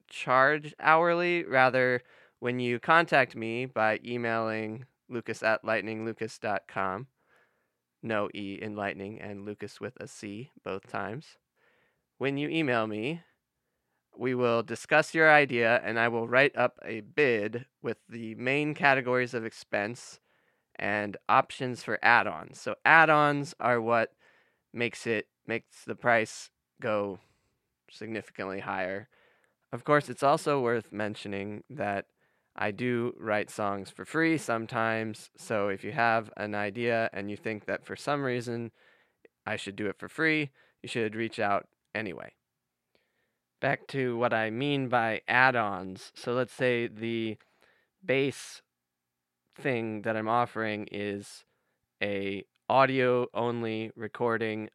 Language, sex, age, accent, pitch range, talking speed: English, male, 20-39, American, 105-125 Hz, 130 wpm